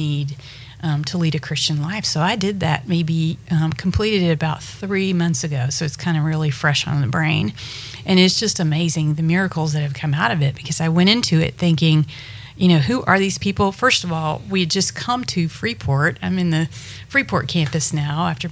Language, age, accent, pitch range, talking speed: English, 40-59, American, 150-180 Hz, 220 wpm